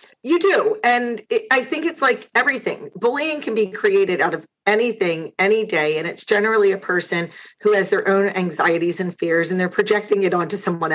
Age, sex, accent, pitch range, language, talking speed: 40-59, female, American, 195-260 Hz, English, 190 wpm